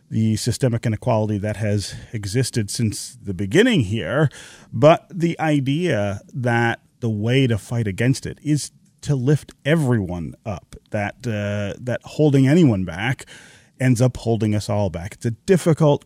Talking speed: 150 wpm